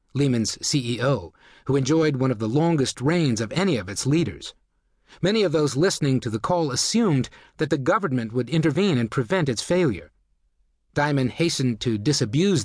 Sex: male